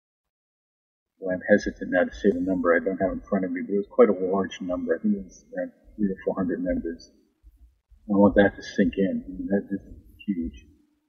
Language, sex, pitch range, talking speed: English, male, 90-125 Hz, 225 wpm